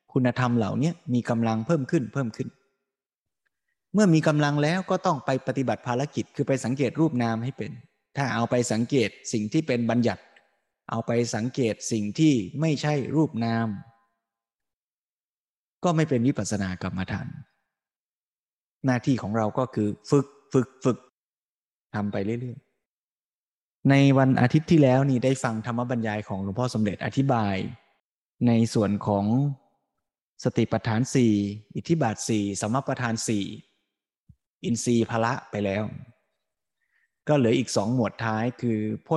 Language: Thai